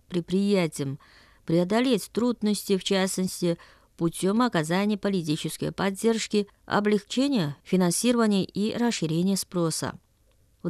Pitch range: 165-225 Hz